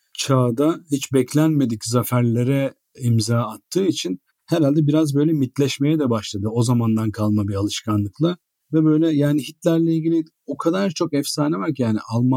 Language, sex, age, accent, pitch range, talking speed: Turkish, male, 40-59, native, 115-145 Hz, 145 wpm